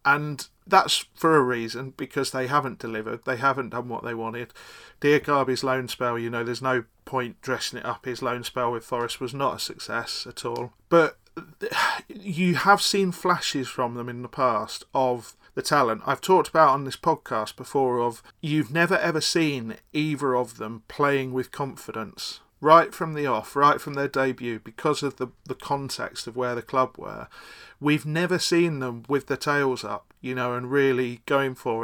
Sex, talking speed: male, 190 wpm